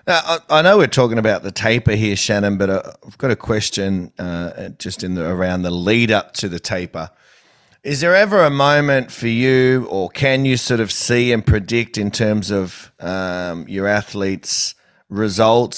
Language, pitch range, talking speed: English, 100-125 Hz, 185 wpm